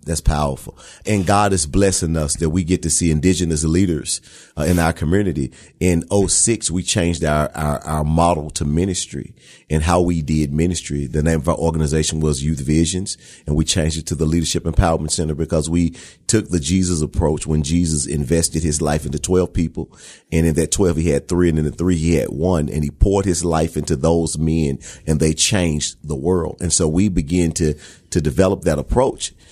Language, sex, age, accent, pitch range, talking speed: English, male, 40-59, American, 80-95 Hz, 205 wpm